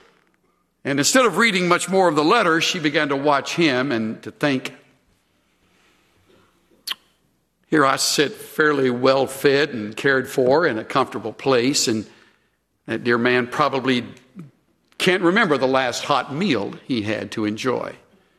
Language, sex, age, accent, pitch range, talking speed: English, male, 60-79, American, 115-155 Hz, 145 wpm